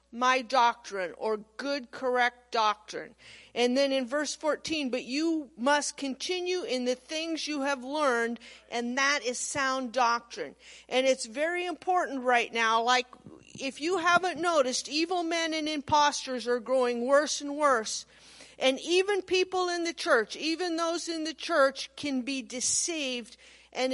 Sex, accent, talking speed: female, American, 155 wpm